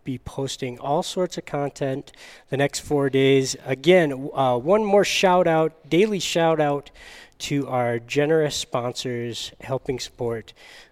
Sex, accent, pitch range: male, American, 125-170 Hz